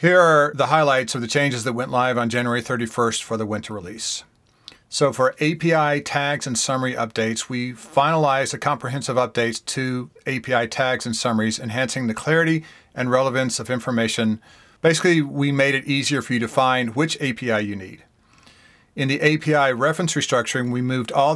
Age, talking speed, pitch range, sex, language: 40-59, 175 wpm, 120-145 Hz, male, English